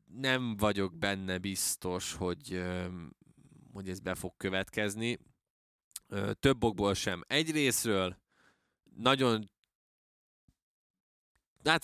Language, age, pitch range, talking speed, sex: Hungarian, 20-39, 95-115 Hz, 85 wpm, male